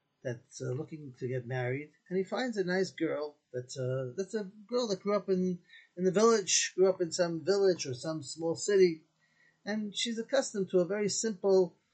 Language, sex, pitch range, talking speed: English, male, 150-195 Hz, 200 wpm